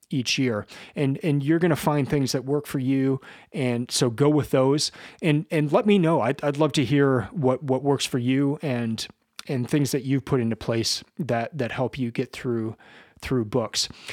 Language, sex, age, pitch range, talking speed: English, male, 30-49, 125-150 Hz, 210 wpm